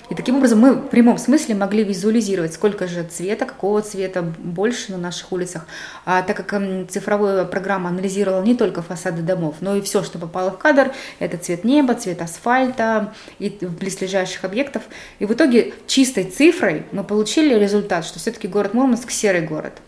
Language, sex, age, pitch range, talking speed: Russian, female, 20-39, 180-220 Hz, 170 wpm